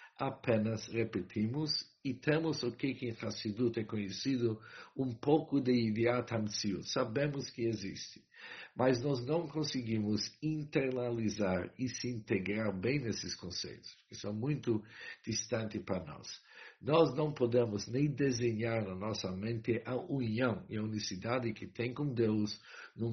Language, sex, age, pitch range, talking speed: English, male, 60-79, 105-130 Hz, 140 wpm